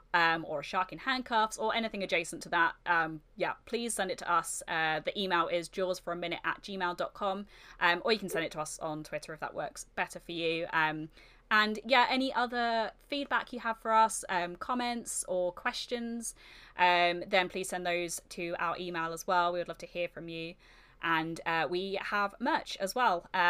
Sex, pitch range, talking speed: female, 170-220 Hz, 210 wpm